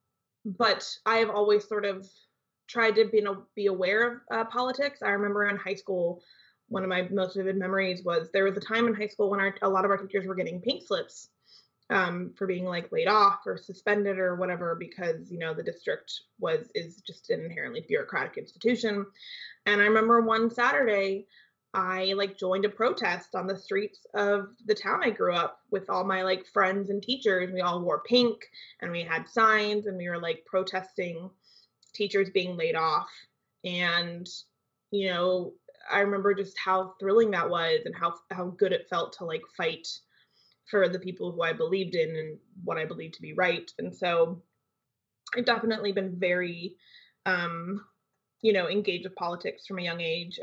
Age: 20-39